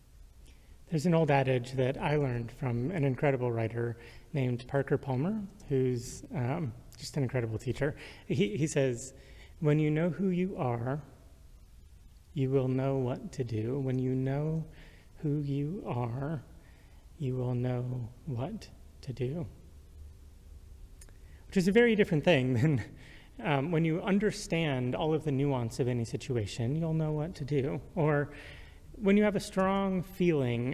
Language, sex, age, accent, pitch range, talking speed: English, male, 30-49, American, 115-145 Hz, 150 wpm